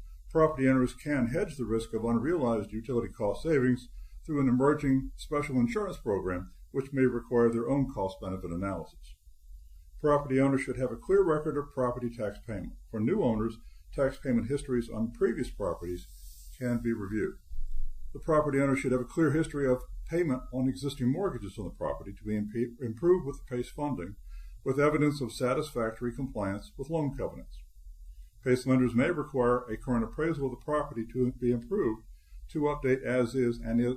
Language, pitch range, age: English, 100-135 Hz, 60-79